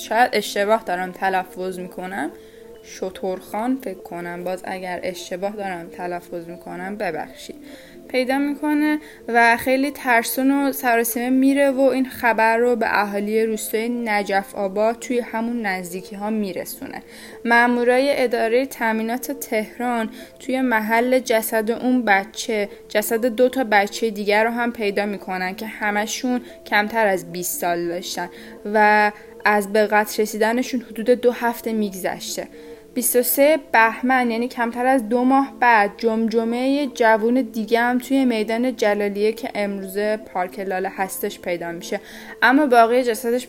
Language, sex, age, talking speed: Persian, female, 10-29, 135 wpm